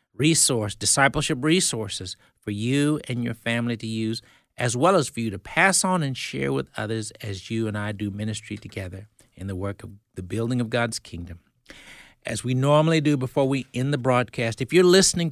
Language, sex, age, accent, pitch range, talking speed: English, male, 60-79, American, 115-150 Hz, 195 wpm